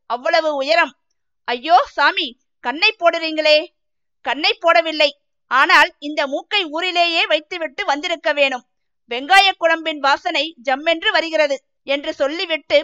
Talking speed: 105 wpm